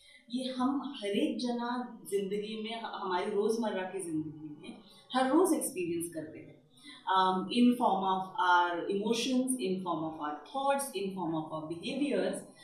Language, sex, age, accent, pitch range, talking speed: Hindi, female, 30-49, native, 195-280 Hz, 150 wpm